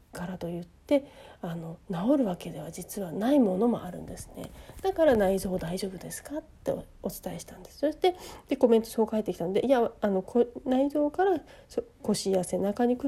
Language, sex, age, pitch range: Japanese, female, 40-59, 190-275 Hz